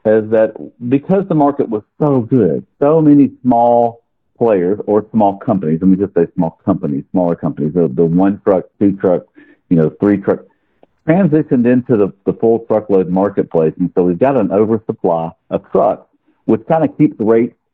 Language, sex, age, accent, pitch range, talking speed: English, male, 50-69, American, 95-120 Hz, 175 wpm